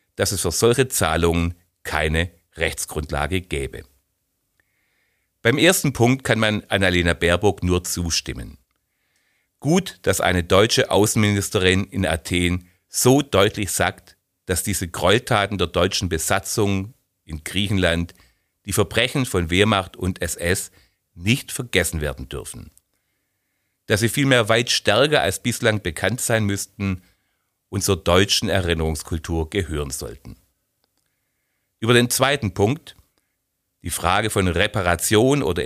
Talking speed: 120 wpm